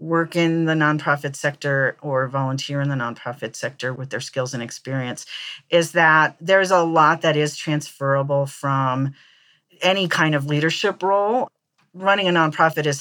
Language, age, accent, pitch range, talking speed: English, 40-59, American, 145-185 Hz, 155 wpm